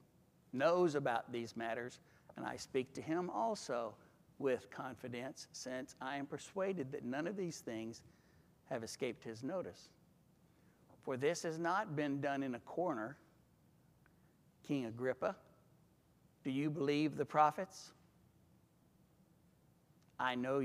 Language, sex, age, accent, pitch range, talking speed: English, male, 60-79, American, 125-165 Hz, 125 wpm